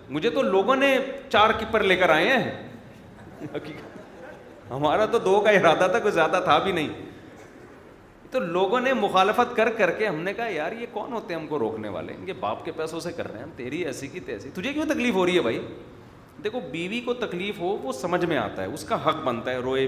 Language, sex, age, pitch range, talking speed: Urdu, male, 30-49, 125-195 Hz, 230 wpm